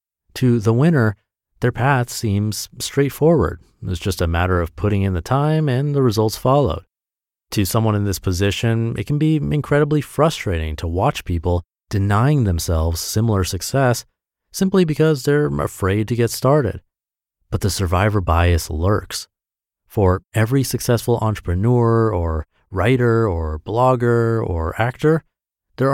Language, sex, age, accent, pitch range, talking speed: English, male, 30-49, American, 95-125 Hz, 140 wpm